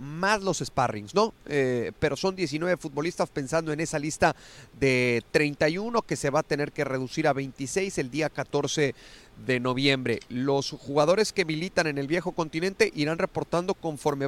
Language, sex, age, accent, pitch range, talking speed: Spanish, male, 30-49, Mexican, 135-175 Hz, 170 wpm